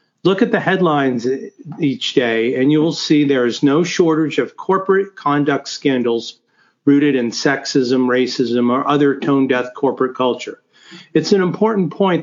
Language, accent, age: English, American, 50-69